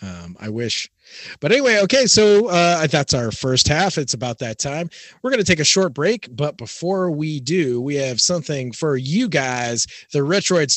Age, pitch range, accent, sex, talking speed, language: 30-49, 130-190 Hz, American, male, 195 wpm, English